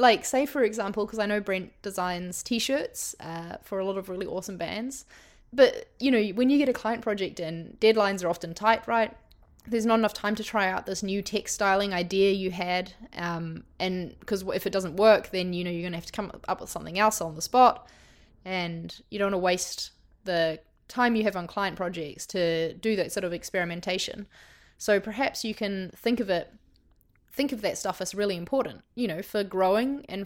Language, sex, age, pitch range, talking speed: English, female, 20-39, 180-220 Hz, 210 wpm